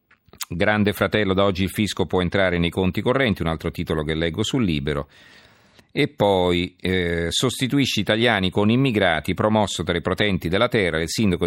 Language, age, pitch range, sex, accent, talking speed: Italian, 50-69, 85-110 Hz, male, native, 175 wpm